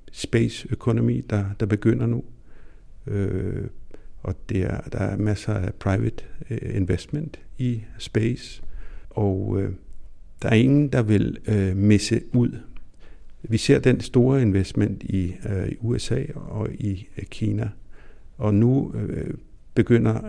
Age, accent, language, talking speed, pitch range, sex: 60-79, native, Danish, 135 wpm, 95-120 Hz, male